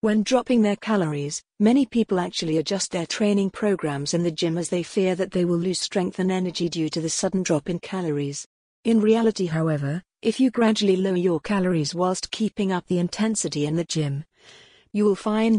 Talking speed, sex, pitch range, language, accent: 195 wpm, female, 170-205 Hz, English, British